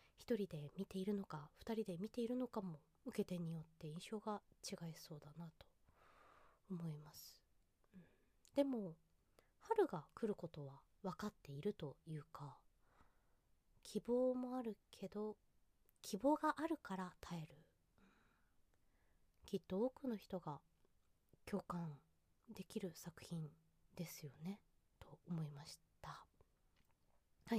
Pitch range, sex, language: 160-240 Hz, female, Japanese